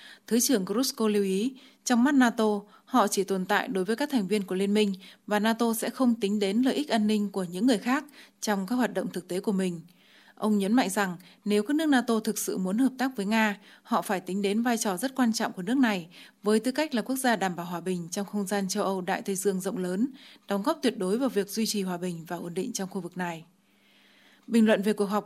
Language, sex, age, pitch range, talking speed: Vietnamese, female, 20-39, 195-235 Hz, 265 wpm